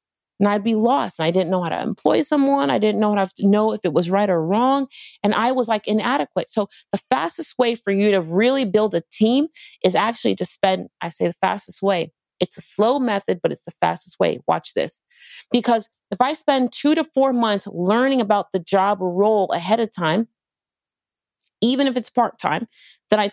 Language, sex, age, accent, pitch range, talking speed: English, female, 30-49, American, 200-270 Hz, 210 wpm